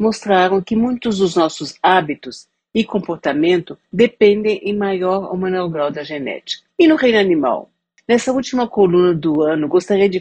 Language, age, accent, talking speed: Portuguese, 50-69, Brazilian, 160 wpm